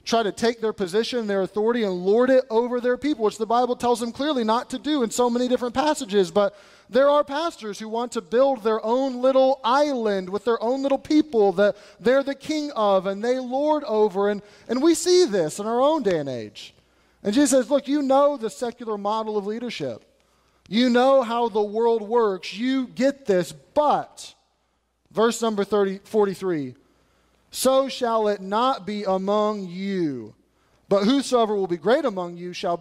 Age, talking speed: 30-49, 190 wpm